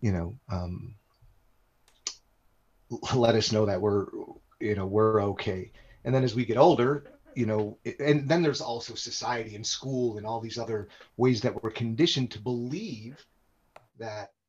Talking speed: 155 wpm